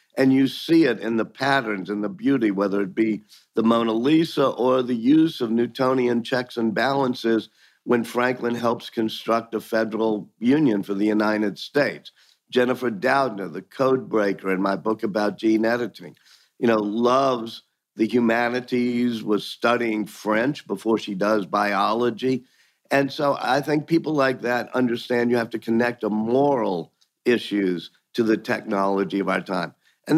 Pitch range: 105-125 Hz